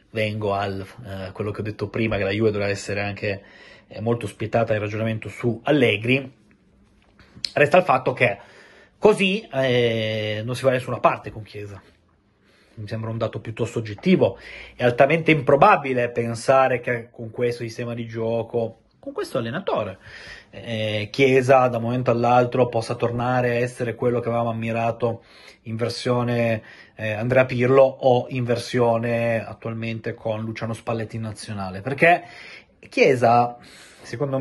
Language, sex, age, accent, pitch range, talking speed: Italian, male, 30-49, native, 110-130 Hz, 150 wpm